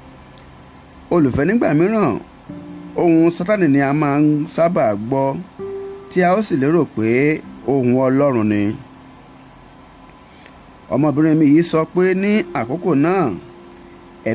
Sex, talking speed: male, 120 wpm